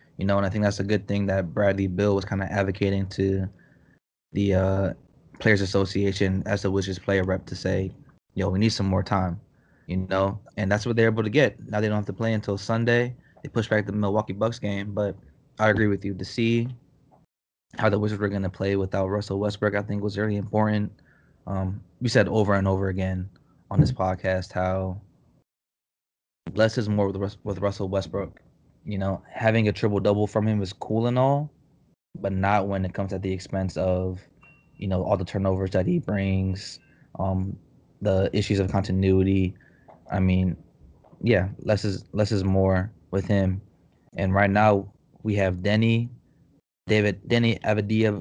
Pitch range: 95-110 Hz